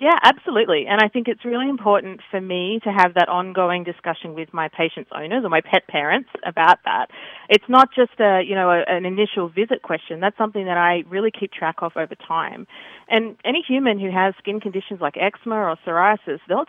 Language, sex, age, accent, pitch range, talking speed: English, female, 30-49, Australian, 175-230 Hz, 205 wpm